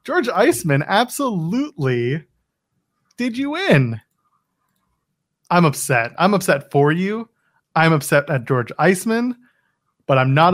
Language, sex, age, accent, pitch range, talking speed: English, male, 30-49, American, 135-170 Hz, 115 wpm